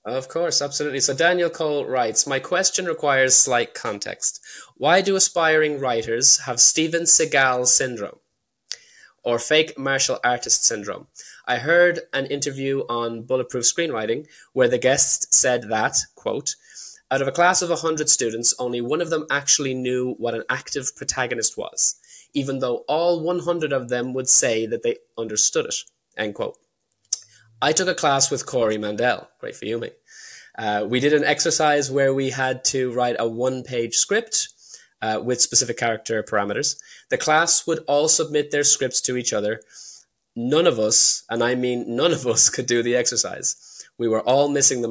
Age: 10-29